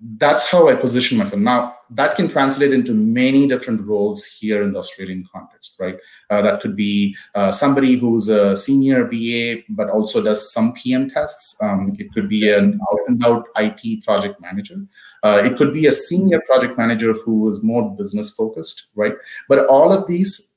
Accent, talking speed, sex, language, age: Indian, 180 wpm, male, English, 30-49